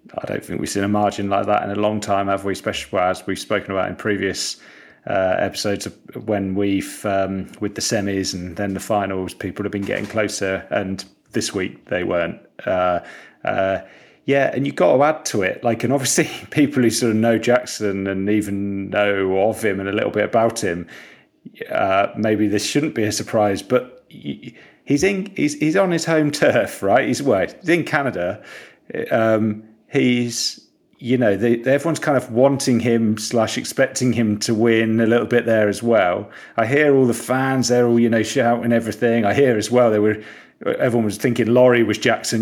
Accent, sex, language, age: British, male, English, 30-49